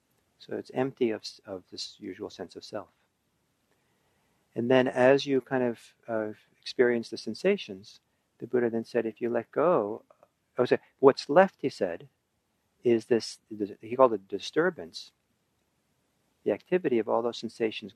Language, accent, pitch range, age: English, American, 110-130 Hz, 50-69